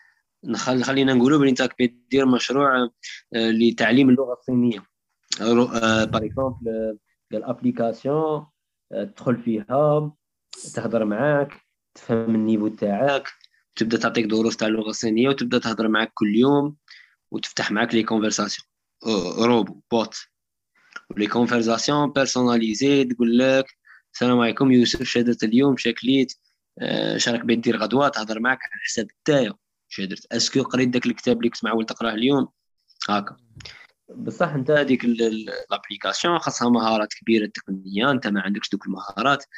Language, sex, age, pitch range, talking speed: Arabic, male, 20-39, 115-140 Hz, 105 wpm